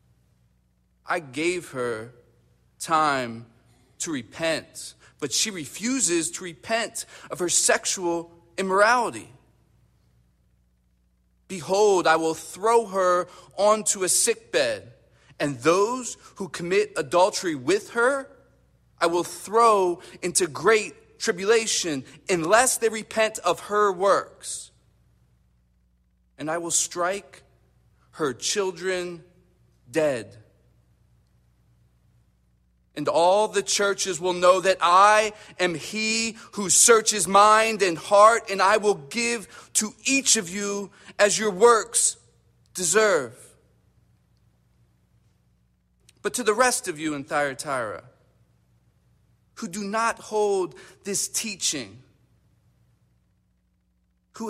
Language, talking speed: English, 100 wpm